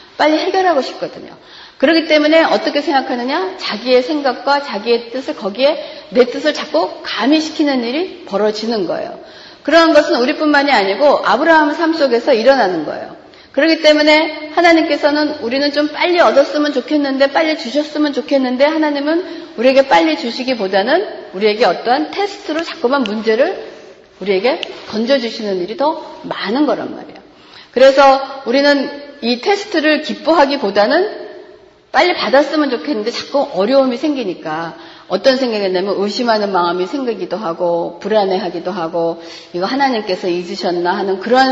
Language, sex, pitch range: Korean, female, 215-310 Hz